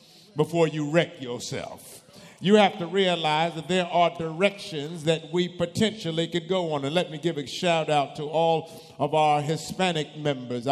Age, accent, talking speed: 50-69, American, 175 wpm